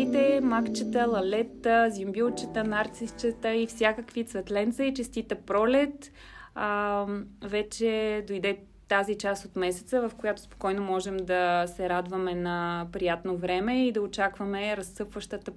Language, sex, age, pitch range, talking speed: Bulgarian, female, 20-39, 190-230 Hz, 120 wpm